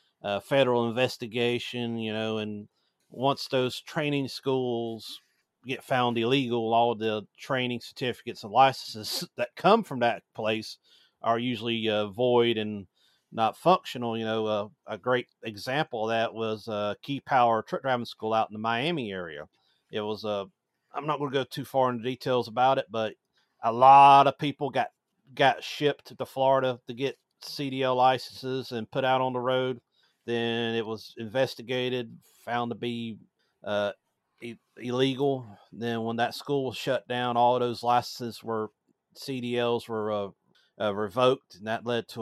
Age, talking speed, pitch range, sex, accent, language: 40-59, 170 wpm, 110-130 Hz, male, American, English